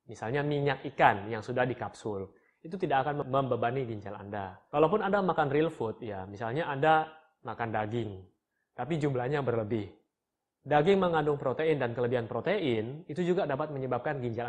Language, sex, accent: Indonesian, male, native